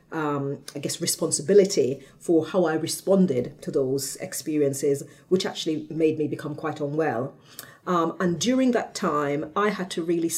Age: 40-59